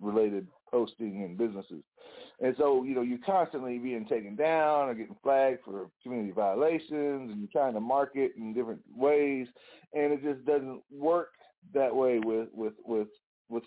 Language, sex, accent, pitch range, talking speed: English, male, American, 110-130 Hz, 165 wpm